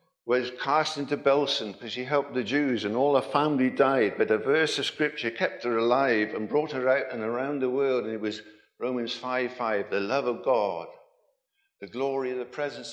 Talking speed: 205 wpm